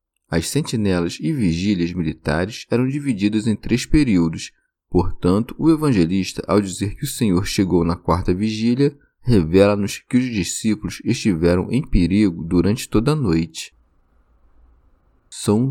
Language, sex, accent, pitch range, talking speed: Portuguese, male, Brazilian, 85-125 Hz, 130 wpm